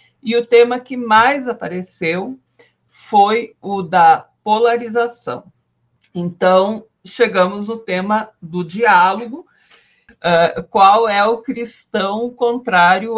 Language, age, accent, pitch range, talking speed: Portuguese, 50-69, Brazilian, 180-235 Hz, 95 wpm